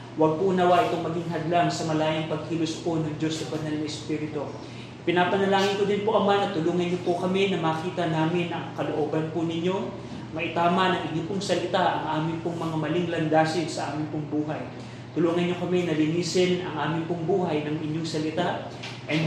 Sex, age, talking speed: male, 30-49, 185 wpm